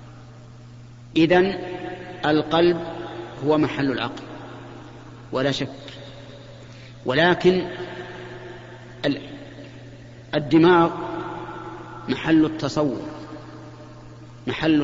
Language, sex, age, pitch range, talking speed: Arabic, male, 40-59, 125-165 Hz, 50 wpm